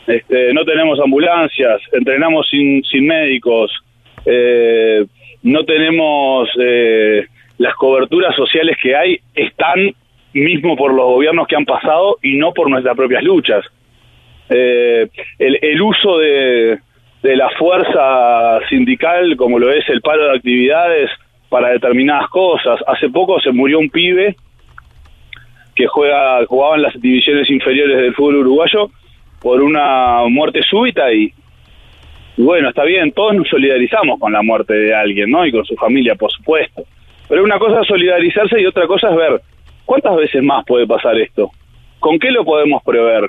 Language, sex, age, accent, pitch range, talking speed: Spanish, male, 40-59, Argentinian, 120-165 Hz, 150 wpm